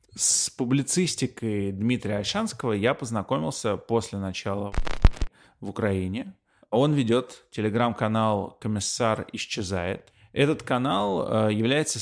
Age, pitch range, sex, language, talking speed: 20-39, 105-130 Hz, male, Russian, 90 wpm